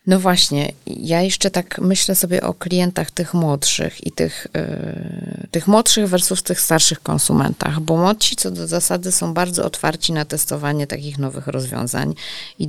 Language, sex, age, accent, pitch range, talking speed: Polish, female, 20-39, native, 145-180 Hz, 160 wpm